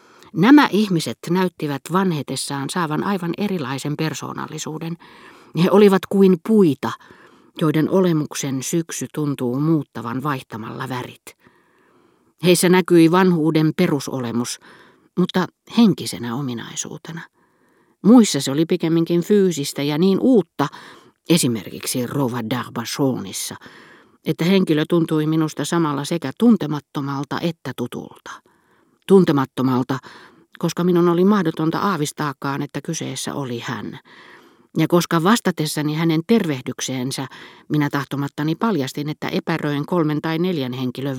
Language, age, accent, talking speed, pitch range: Finnish, 50-69, native, 100 wpm, 135-175 Hz